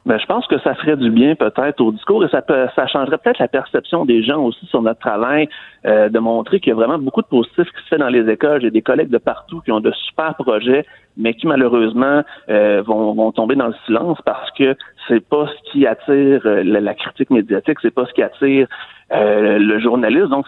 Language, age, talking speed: French, 30-49, 235 wpm